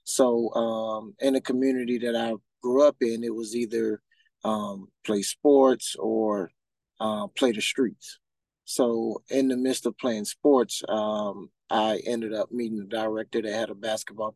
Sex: male